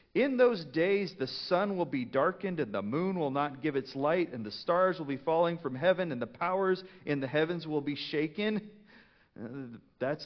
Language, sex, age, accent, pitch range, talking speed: English, male, 40-59, American, 130-170 Hz, 200 wpm